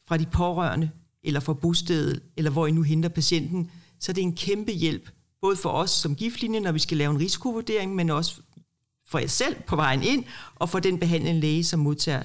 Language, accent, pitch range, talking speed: Danish, native, 140-180 Hz, 215 wpm